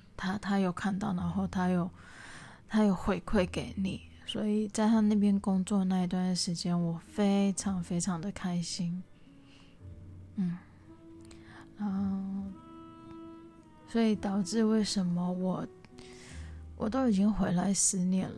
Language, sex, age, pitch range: Chinese, female, 20-39, 170-205 Hz